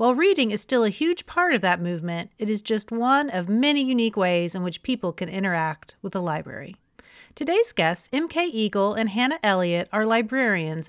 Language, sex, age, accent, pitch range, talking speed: English, female, 40-59, American, 190-255 Hz, 195 wpm